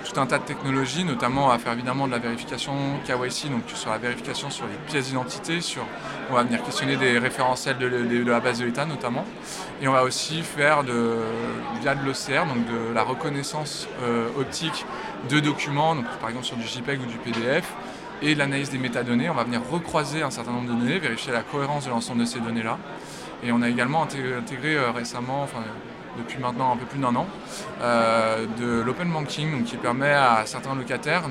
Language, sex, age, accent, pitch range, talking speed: French, male, 20-39, French, 120-140 Hz, 200 wpm